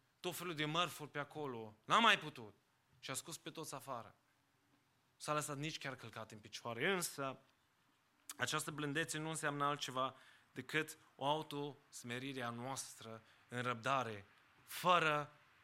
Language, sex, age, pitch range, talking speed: English, male, 20-39, 130-160 Hz, 140 wpm